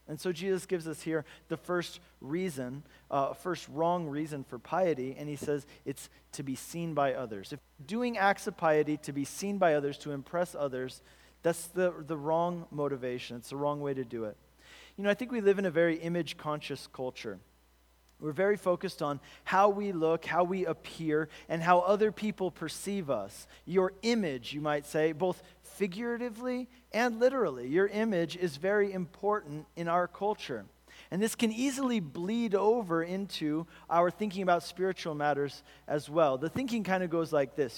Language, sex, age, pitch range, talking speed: English, male, 40-59, 150-190 Hz, 180 wpm